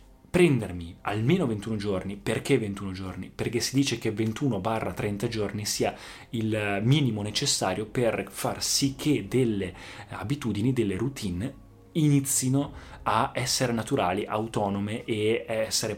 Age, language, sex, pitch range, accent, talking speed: 20-39, Italian, male, 100-130 Hz, native, 120 wpm